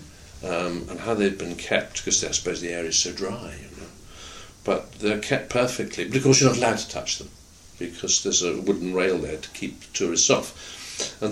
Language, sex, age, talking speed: English, male, 60-79, 205 wpm